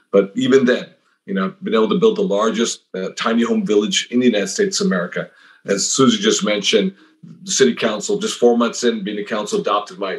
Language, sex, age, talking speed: English, male, 40-59, 225 wpm